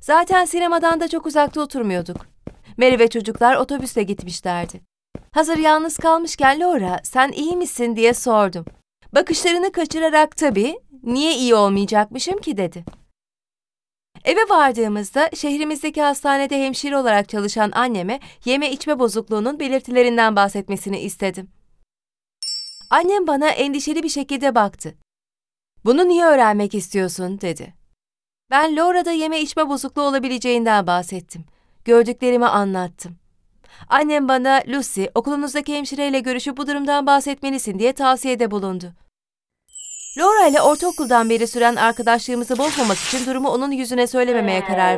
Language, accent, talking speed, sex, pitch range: Turkish, native, 115 wpm, female, 210-290 Hz